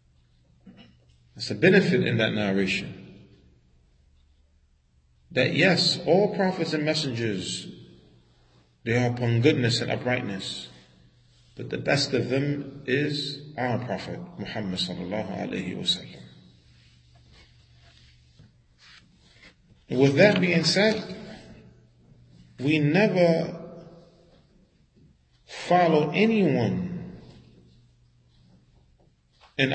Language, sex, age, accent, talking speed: English, male, 40-59, American, 80 wpm